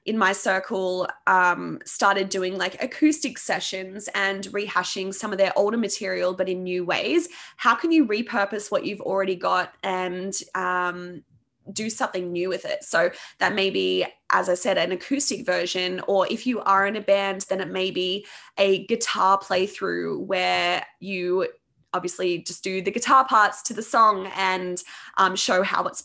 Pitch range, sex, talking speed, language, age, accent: 185-220 Hz, female, 175 wpm, English, 20-39, Australian